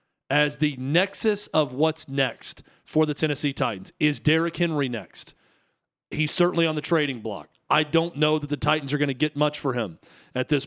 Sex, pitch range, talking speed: male, 135-165 Hz, 195 wpm